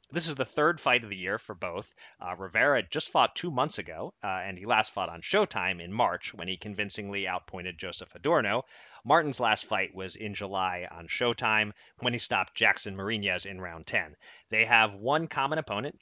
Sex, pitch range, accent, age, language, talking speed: male, 100-150 Hz, American, 30-49, English, 200 wpm